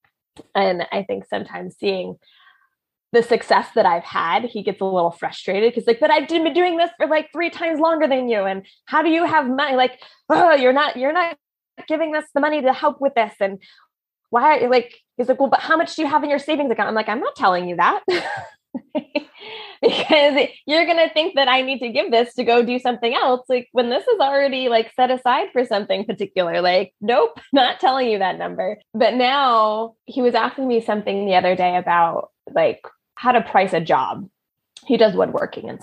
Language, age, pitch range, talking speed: English, 20-39, 210-300 Hz, 215 wpm